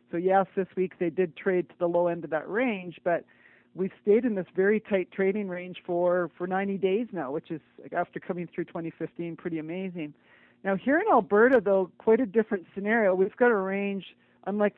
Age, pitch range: 40-59, 170-200 Hz